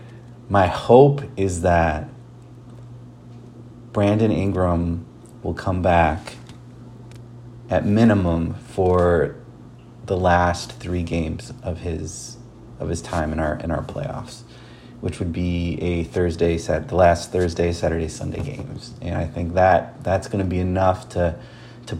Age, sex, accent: 30-49, male, American